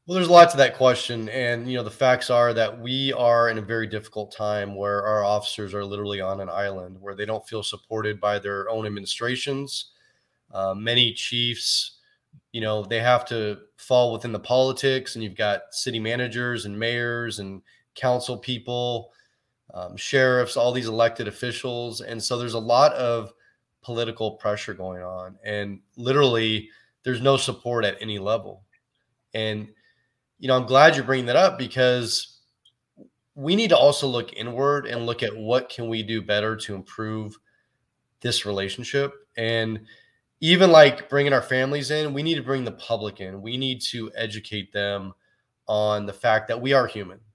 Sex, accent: male, American